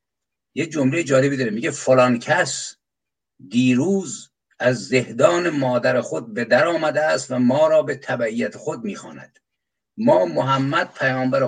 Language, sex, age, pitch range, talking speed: Persian, male, 50-69, 125-160 Hz, 135 wpm